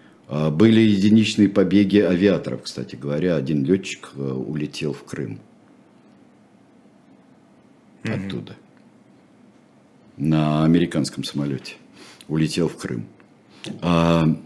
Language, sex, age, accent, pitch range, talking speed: Russian, male, 50-69, native, 70-105 Hz, 80 wpm